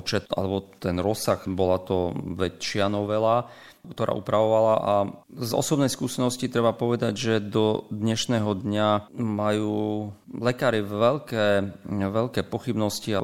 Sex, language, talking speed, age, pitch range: male, Slovak, 110 wpm, 40-59, 95-110 Hz